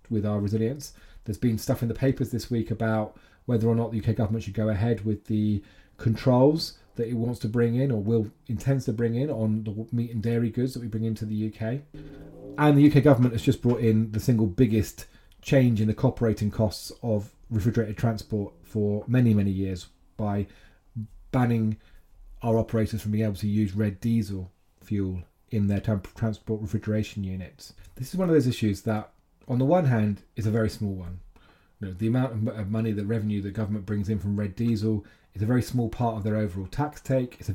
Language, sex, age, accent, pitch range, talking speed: English, male, 30-49, British, 100-120 Hz, 210 wpm